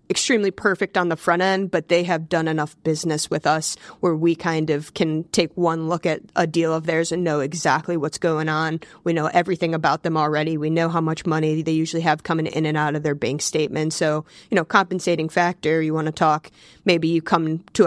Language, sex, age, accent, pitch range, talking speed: English, female, 20-39, American, 155-175 Hz, 230 wpm